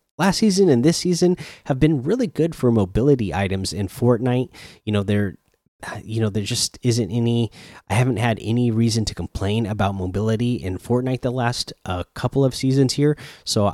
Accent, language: American, English